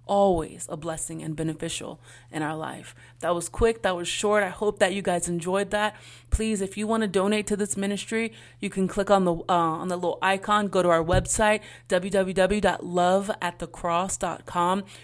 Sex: female